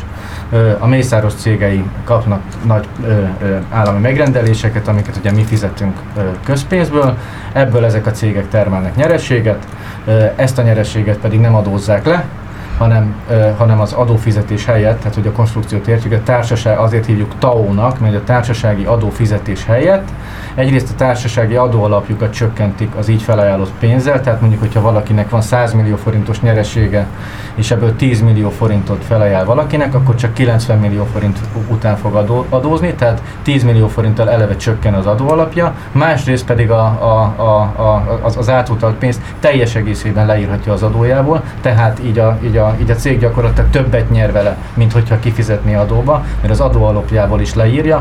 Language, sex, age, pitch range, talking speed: Hungarian, male, 30-49, 105-120 Hz, 155 wpm